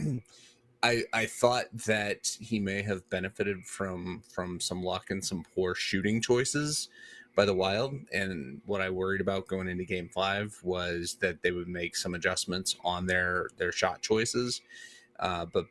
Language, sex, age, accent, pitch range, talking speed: English, male, 30-49, American, 90-110 Hz, 165 wpm